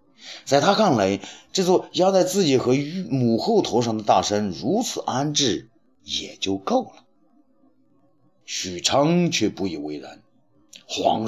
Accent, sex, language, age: native, male, Chinese, 50-69